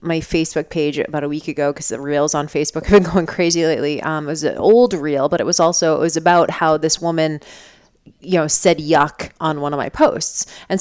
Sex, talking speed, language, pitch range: female, 240 wpm, English, 155-205 Hz